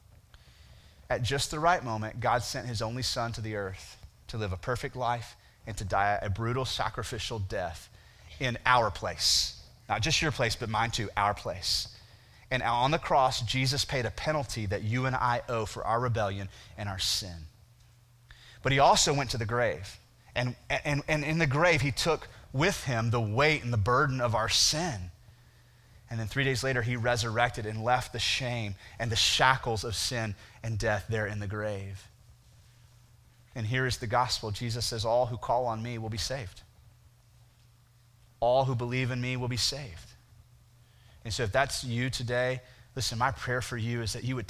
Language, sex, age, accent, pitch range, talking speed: English, male, 30-49, American, 110-130 Hz, 190 wpm